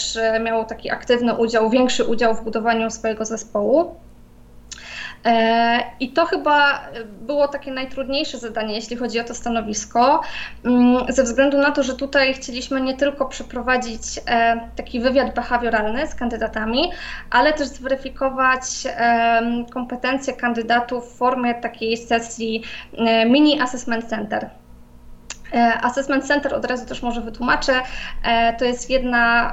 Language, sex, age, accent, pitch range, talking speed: Polish, female, 20-39, native, 230-260 Hz, 120 wpm